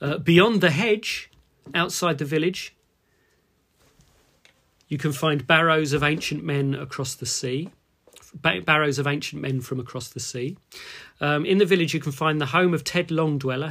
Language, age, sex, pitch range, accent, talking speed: English, 40-59, male, 135-160 Hz, British, 160 wpm